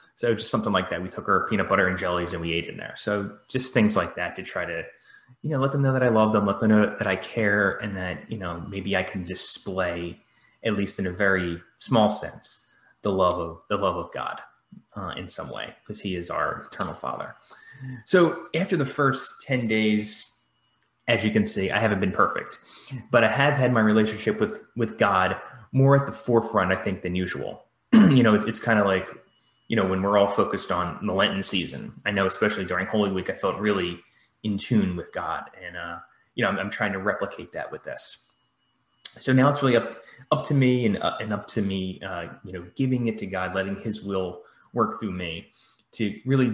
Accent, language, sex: American, English, male